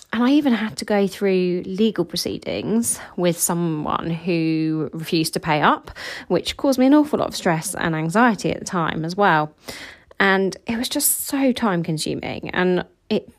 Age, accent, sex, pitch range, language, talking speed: 30-49, British, female, 165-215 Hz, English, 180 wpm